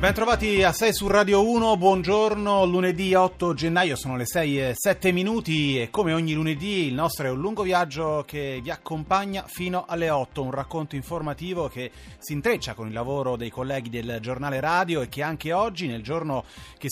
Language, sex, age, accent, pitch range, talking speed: Italian, male, 30-49, native, 125-180 Hz, 190 wpm